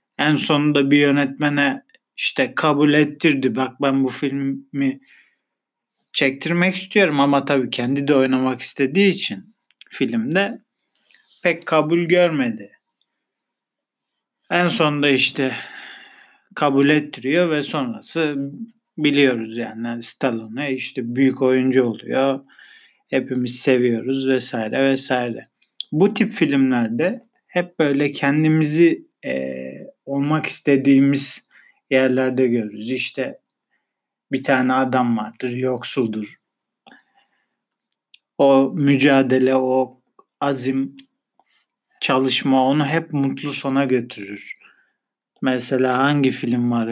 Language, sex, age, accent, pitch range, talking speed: Turkish, male, 50-69, native, 130-150 Hz, 95 wpm